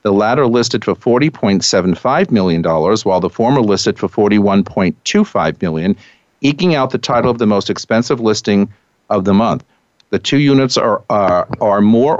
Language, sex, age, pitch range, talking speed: English, male, 50-69, 105-130 Hz, 195 wpm